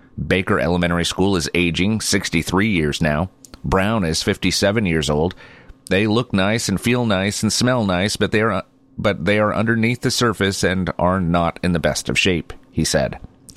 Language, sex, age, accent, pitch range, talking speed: English, male, 30-49, American, 85-105 Hz, 180 wpm